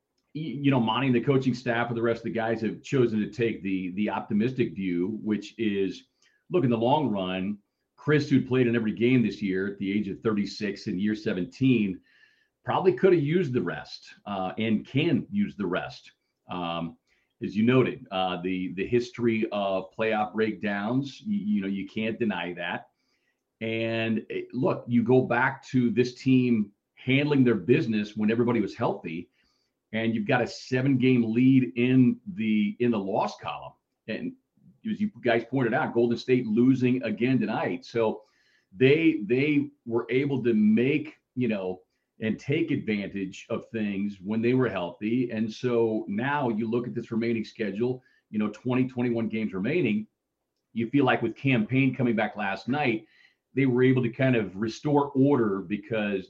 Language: English